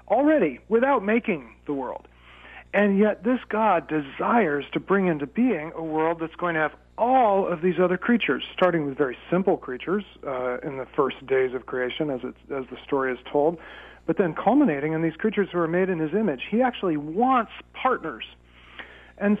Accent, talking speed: American, 190 wpm